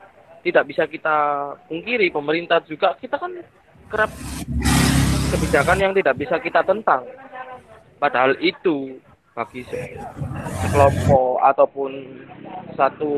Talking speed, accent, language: 95 wpm, native, Indonesian